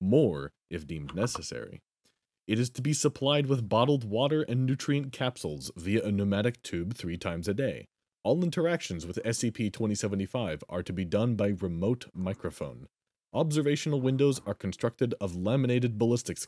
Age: 30-49